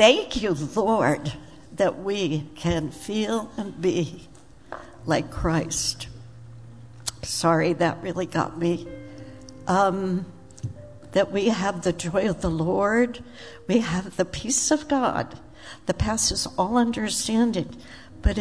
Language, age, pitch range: English, 60-79, 155-215 Hz